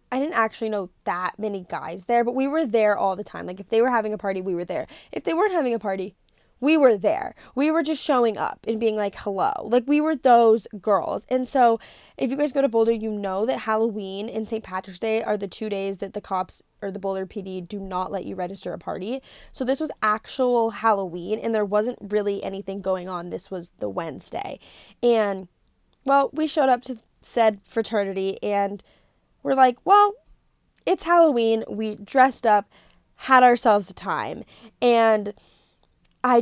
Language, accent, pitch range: English, American, 200-255 Hz